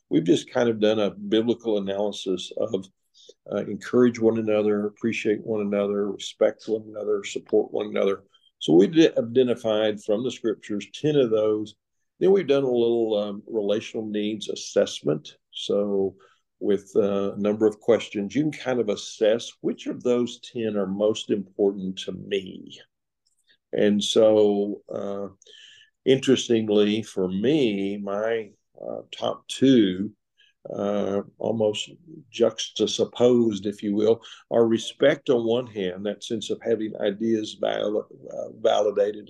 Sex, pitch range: male, 100-115 Hz